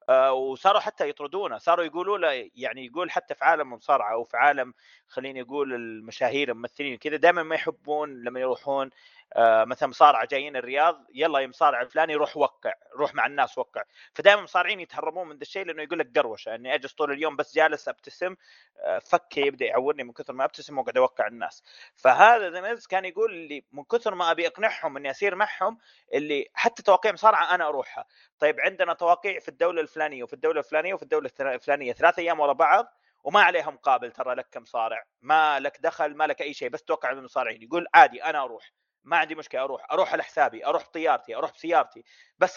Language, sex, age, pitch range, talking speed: Arabic, male, 30-49, 145-210 Hz, 185 wpm